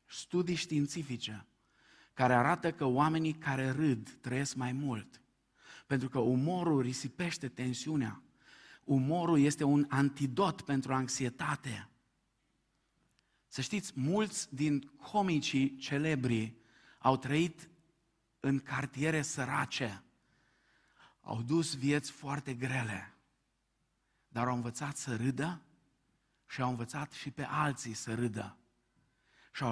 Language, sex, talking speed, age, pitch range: Romanian, male, 105 wpm, 50-69, 125-155 Hz